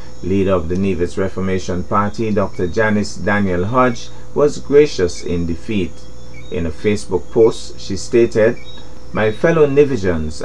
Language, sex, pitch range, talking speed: English, male, 95-115 Hz, 130 wpm